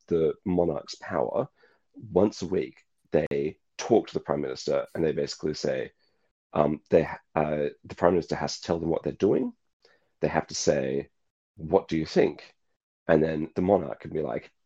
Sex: male